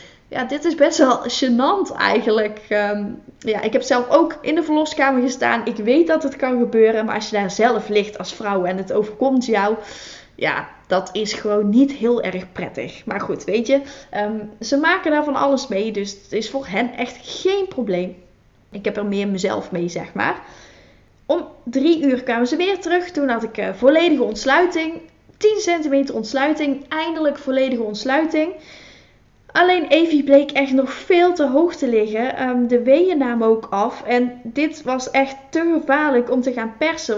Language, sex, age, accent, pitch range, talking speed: Dutch, female, 10-29, Dutch, 220-285 Hz, 185 wpm